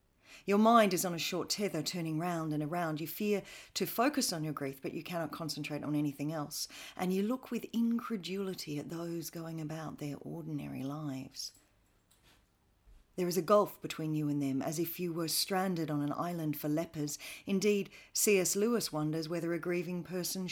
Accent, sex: Australian, female